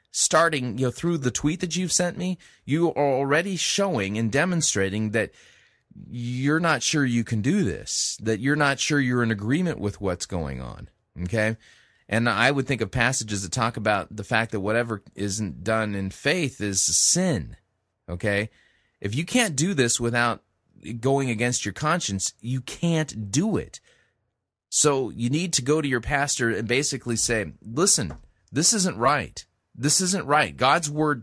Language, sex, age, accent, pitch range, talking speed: English, male, 30-49, American, 110-150 Hz, 175 wpm